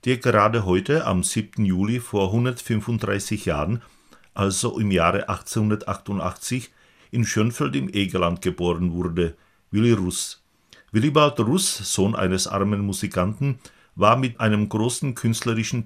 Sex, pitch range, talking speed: male, 95-115 Hz, 120 wpm